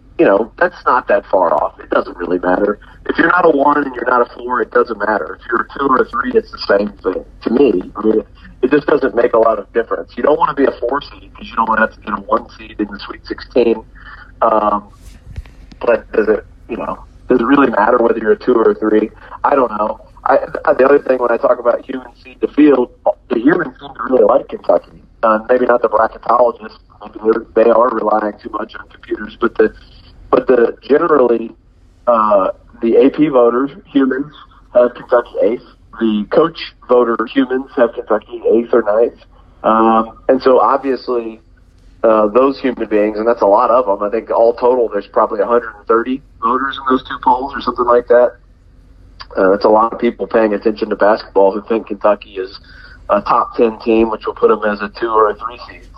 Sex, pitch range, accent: male, 105-125 Hz, American